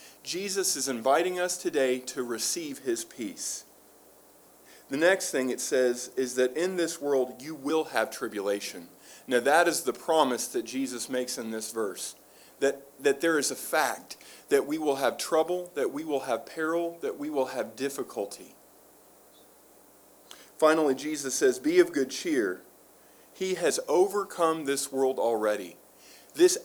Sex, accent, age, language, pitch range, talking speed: male, American, 40-59, English, 130-170 Hz, 155 wpm